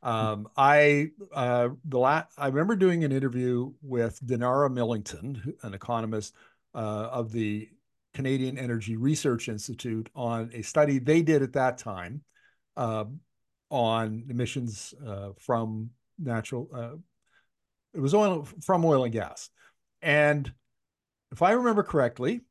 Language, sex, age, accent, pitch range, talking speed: English, male, 50-69, American, 115-145 Hz, 130 wpm